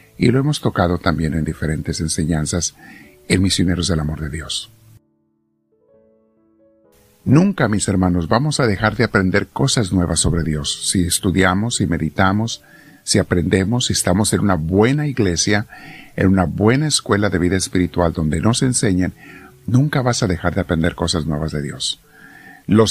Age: 50-69